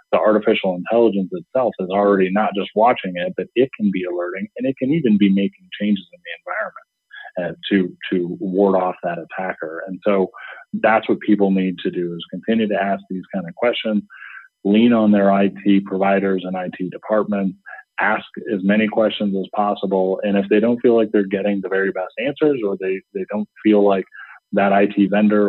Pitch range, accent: 95-105 Hz, American